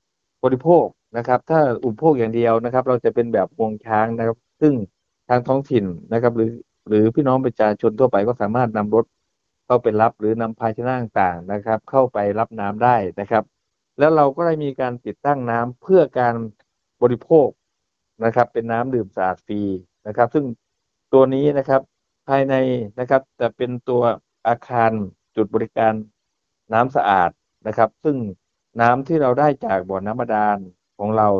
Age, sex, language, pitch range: 60-79, male, Thai, 105-130 Hz